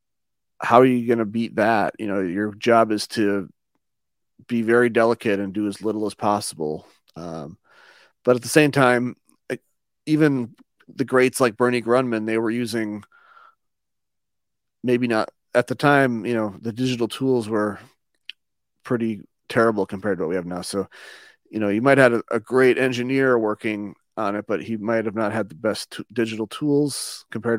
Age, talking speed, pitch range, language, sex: 30-49, 170 wpm, 100-120 Hz, English, male